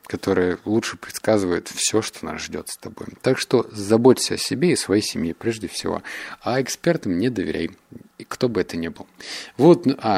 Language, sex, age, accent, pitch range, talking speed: Russian, male, 30-49, native, 100-135 Hz, 175 wpm